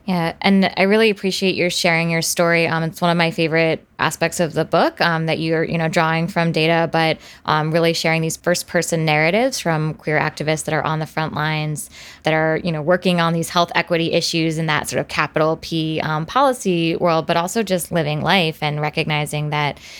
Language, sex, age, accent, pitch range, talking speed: English, female, 20-39, American, 155-180 Hz, 215 wpm